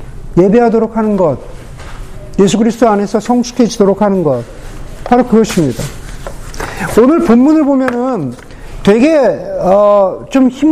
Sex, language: male, Korean